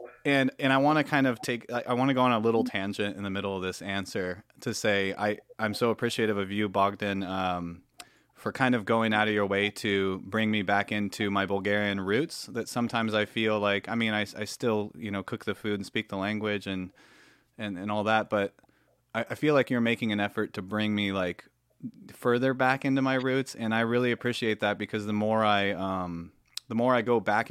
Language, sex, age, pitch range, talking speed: Bulgarian, male, 30-49, 95-115 Hz, 230 wpm